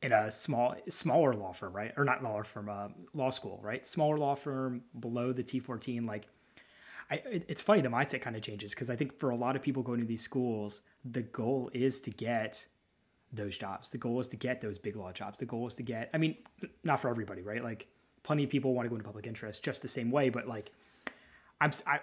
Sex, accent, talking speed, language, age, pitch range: male, American, 235 wpm, English, 20-39, 115-135 Hz